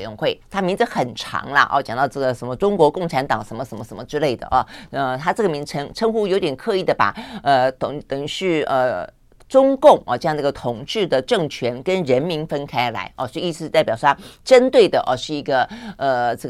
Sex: female